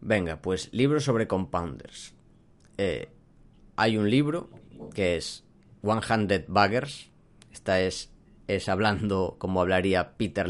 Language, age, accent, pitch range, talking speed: Spanish, 30-49, Spanish, 90-115 Hz, 115 wpm